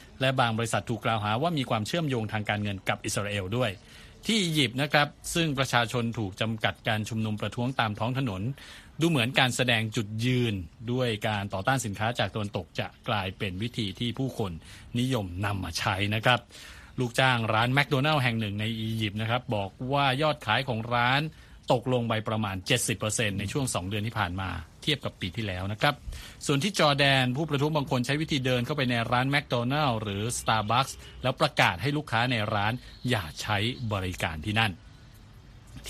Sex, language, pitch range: male, Thai, 105-130 Hz